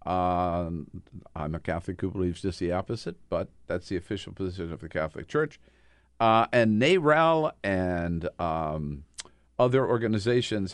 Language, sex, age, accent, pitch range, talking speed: English, male, 50-69, American, 90-115 Hz, 140 wpm